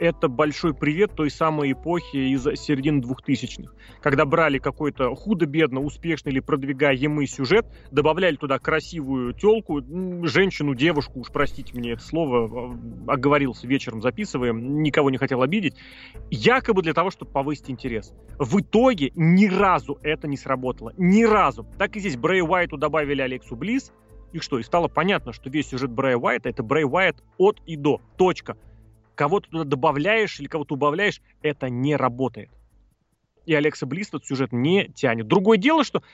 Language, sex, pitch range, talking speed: Russian, male, 135-175 Hz, 160 wpm